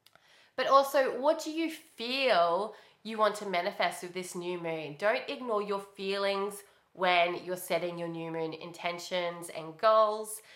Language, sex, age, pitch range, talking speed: English, female, 20-39, 175-220 Hz, 155 wpm